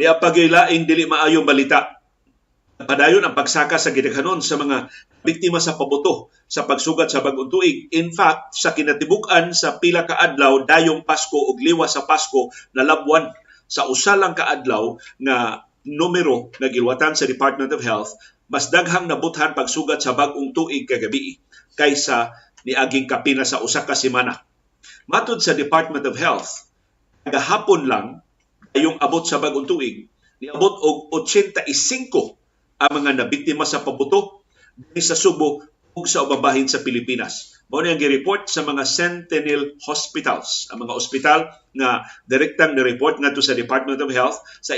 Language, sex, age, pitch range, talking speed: Filipino, male, 50-69, 140-175 Hz, 145 wpm